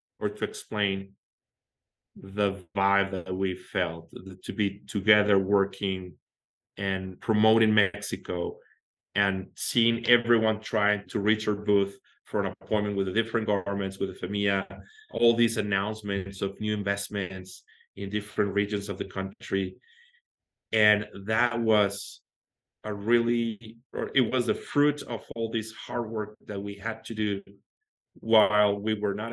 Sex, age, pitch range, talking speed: male, 30-49, 100-115 Hz, 140 wpm